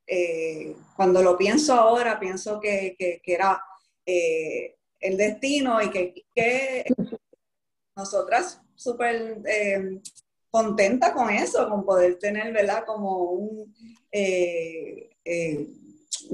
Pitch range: 180-230 Hz